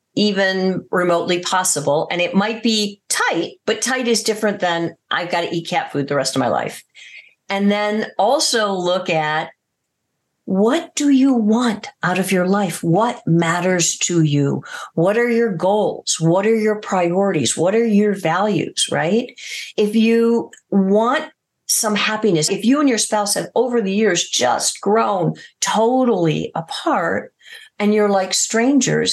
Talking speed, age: 155 wpm, 50-69